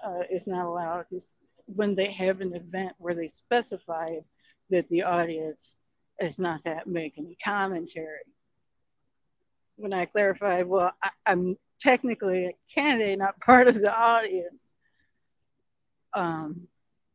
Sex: female